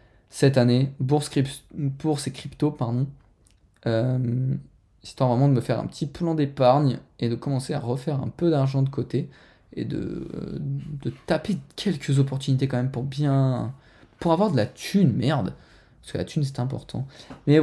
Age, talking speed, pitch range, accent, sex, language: 20-39, 175 wpm, 120-145 Hz, French, male, French